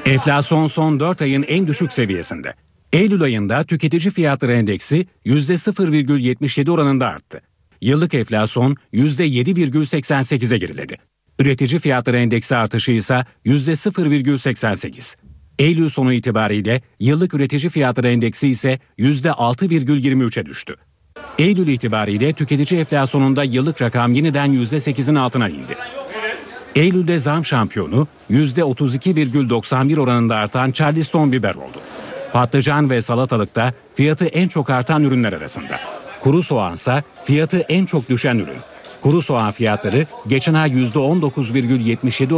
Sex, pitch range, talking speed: male, 125-155 Hz, 110 wpm